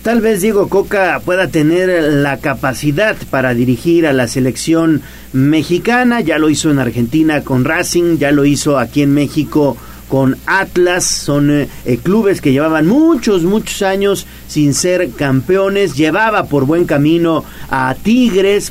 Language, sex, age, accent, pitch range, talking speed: Spanish, male, 40-59, Mexican, 145-200 Hz, 150 wpm